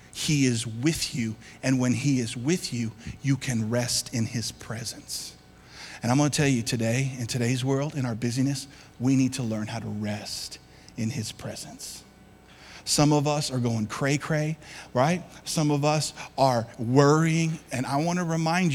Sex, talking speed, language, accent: male, 180 wpm, English, American